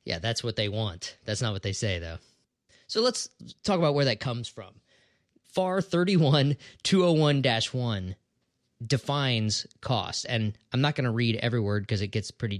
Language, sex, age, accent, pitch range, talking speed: English, male, 20-39, American, 110-145 Hz, 165 wpm